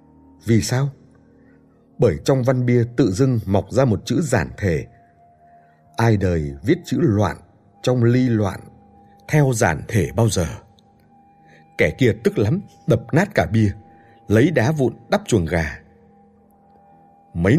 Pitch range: 80-120 Hz